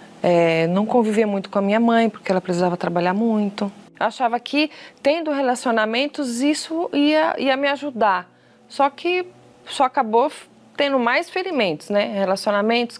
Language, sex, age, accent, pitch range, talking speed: Portuguese, female, 20-39, Brazilian, 205-275 Hz, 150 wpm